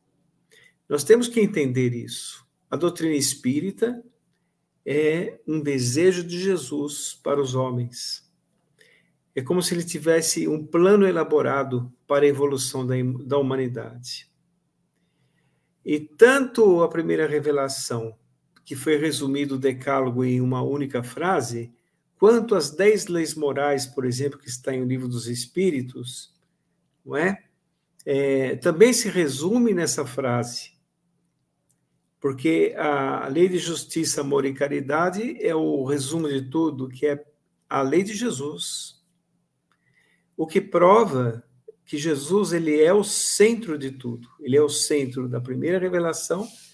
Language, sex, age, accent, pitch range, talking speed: Portuguese, male, 50-69, Brazilian, 130-170 Hz, 125 wpm